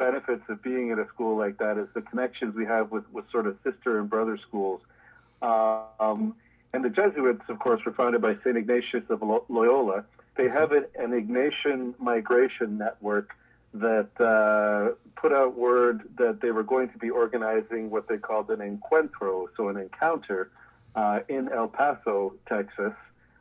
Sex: male